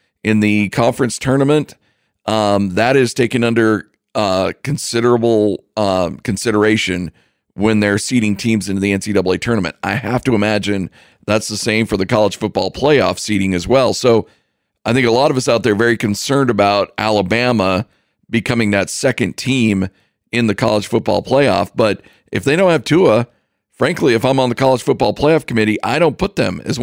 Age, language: 40-59, English